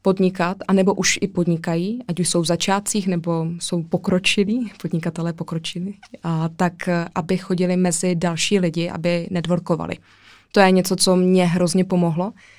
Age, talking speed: 20-39, 155 wpm